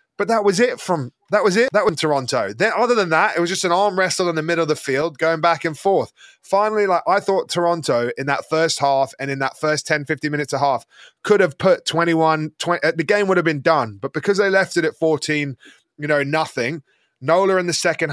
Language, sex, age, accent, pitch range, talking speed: English, male, 20-39, British, 145-180 Hz, 245 wpm